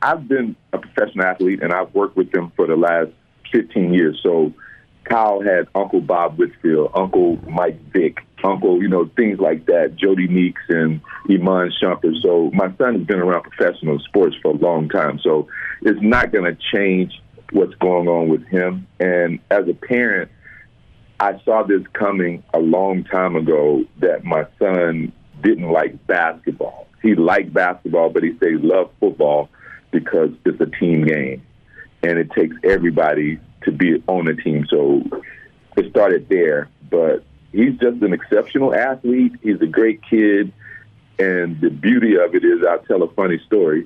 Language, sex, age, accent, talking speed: English, male, 40-59, American, 170 wpm